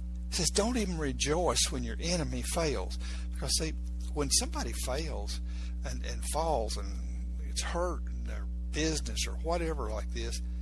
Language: English